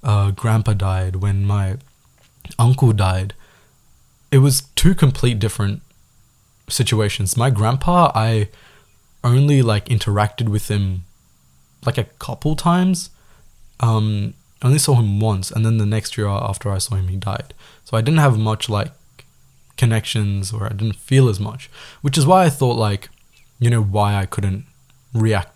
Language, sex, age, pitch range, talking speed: Tamil, male, 20-39, 105-135 Hz, 155 wpm